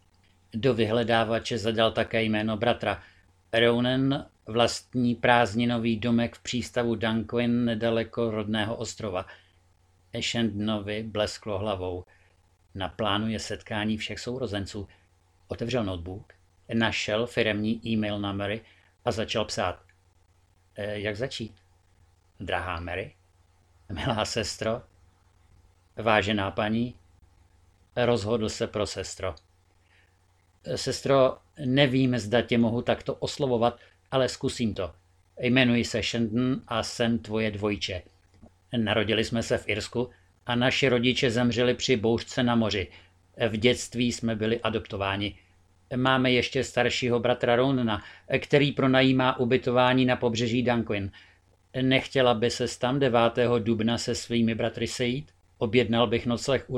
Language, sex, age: Czech, male, 50-69